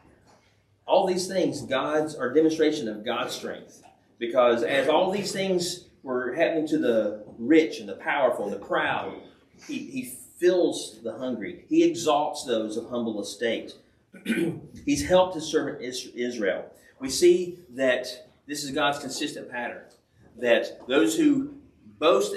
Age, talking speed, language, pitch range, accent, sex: 40-59, 140 wpm, English, 125-175 Hz, American, male